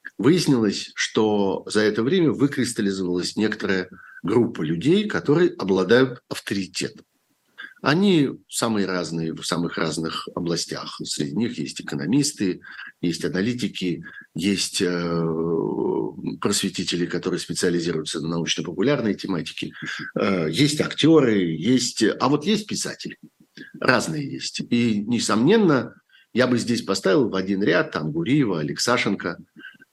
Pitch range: 90-130 Hz